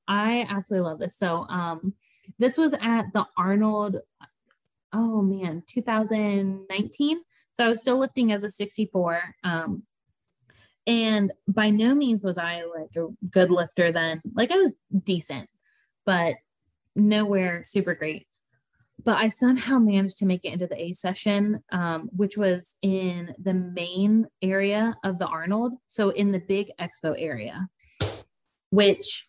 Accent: American